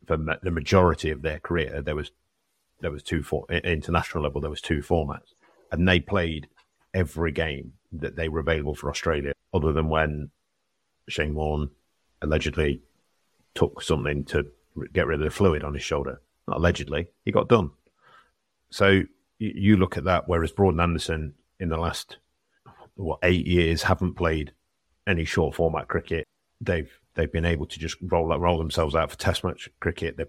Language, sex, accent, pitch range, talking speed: English, male, British, 75-90 Hz, 175 wpm